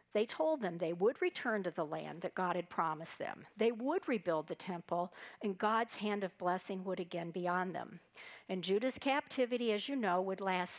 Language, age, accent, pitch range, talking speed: English, 60-79, American, 185-240 Hz, 205 wpm